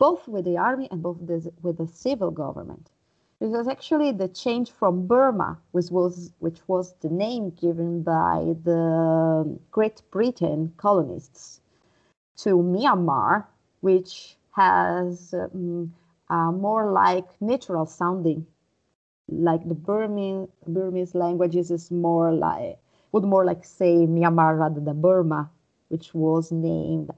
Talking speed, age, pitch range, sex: 130 wpm, 30-49, 165-190 Hz, female